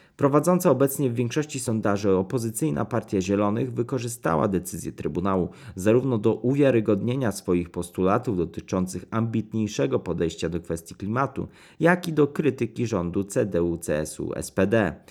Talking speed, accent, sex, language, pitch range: 120 wpm, native, male, Polish, 95-125 Hz